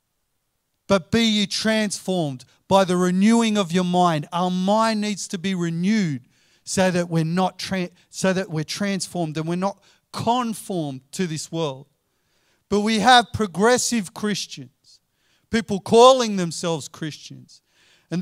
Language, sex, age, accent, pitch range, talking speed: English, male, 40-59, Australian, 155-205 Hz, 140 wpm